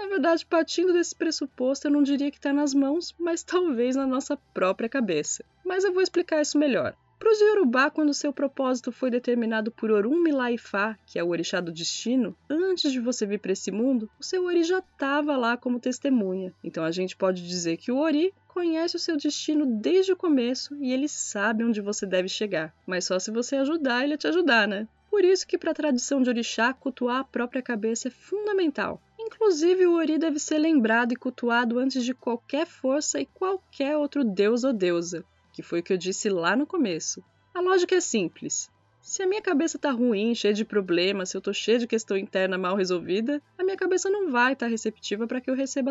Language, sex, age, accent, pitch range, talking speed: Portuguese, female, 10-29, Brazilian, 230-330 Hz, 215 wpm